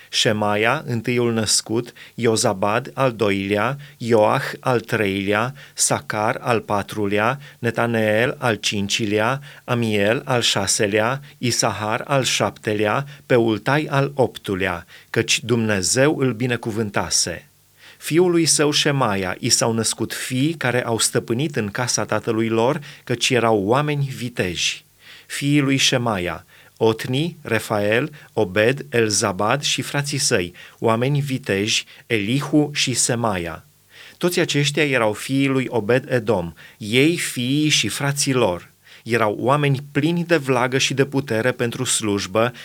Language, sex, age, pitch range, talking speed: Romanian, male, 30-49, 110-140 Hz, 115 wpm